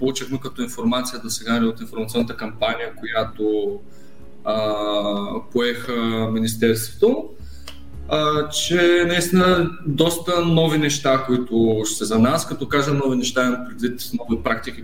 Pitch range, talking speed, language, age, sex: 115-150 Hz, 120 wpm, Bulgarian, 20-39, male